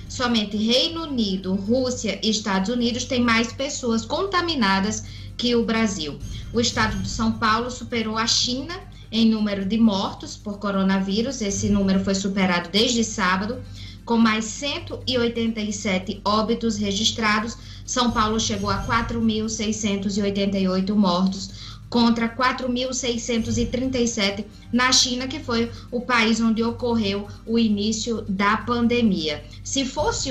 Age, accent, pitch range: 20-39, Brazilian, 195-240 Hz